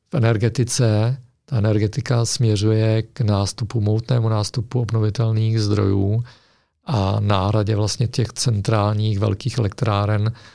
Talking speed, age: 95 wpm, 50-69